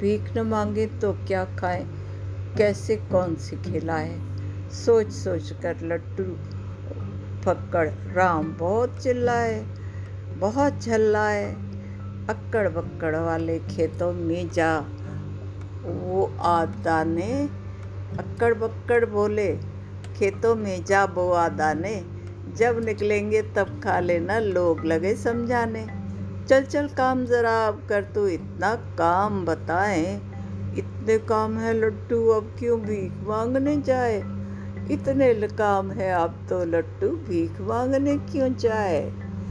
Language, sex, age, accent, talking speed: Hindi, female, 50-69, native, 115 wpm